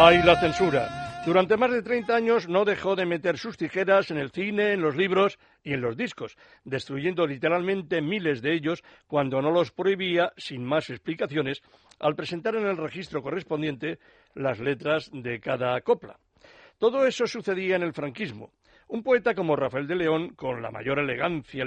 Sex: male